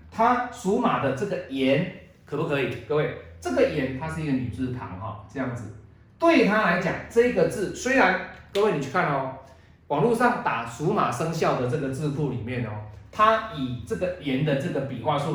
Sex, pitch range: male, 125-195 Hz